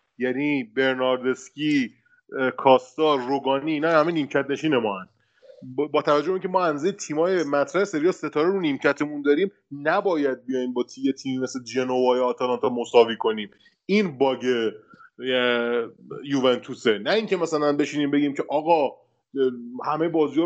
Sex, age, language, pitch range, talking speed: male, 30-49, Persian, 140-180 Hz, 135 wpm